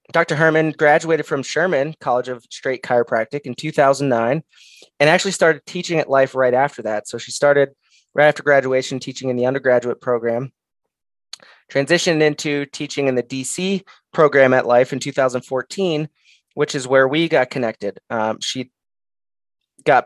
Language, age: English, 20-39